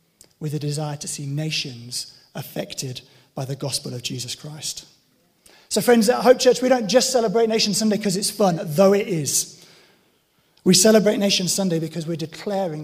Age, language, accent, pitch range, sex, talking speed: 30-49, English, British, 160-215 Hz, male, 175 wpm